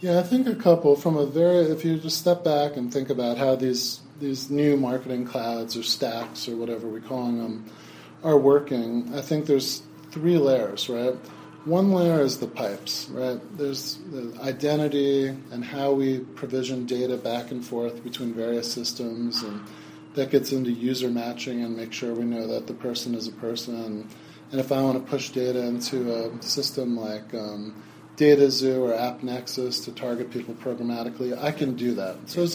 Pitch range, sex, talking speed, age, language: 120-145 Hz, male, 185 wpm, 30-49, English